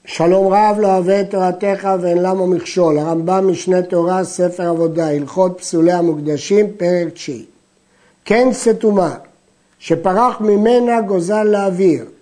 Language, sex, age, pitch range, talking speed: Hebrew, male, 50-69, 165-210 Hz, 125 wpm